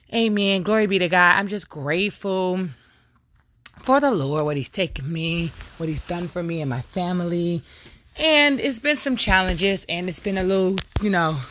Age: 20-39